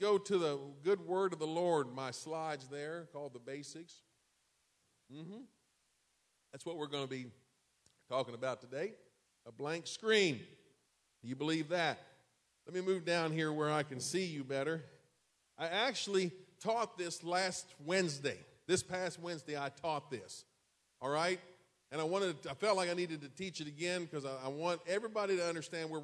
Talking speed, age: 170 wpm, 40-59